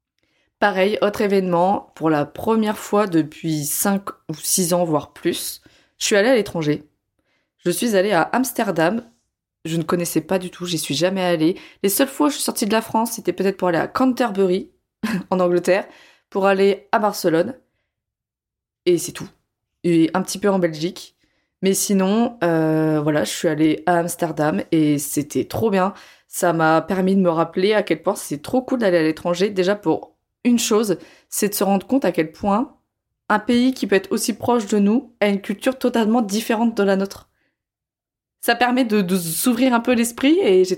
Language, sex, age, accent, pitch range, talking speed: French, female, 20-39, French, 165-225 Hz, 195 wpm